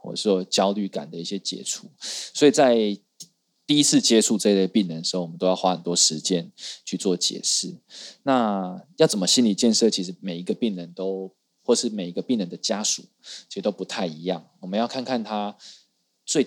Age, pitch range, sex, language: 20-39, 90-110 Hz, male, Chinese